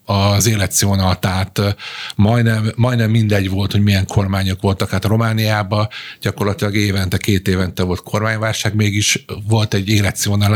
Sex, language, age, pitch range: male, Hungarian, 50-69, 95-110 Hz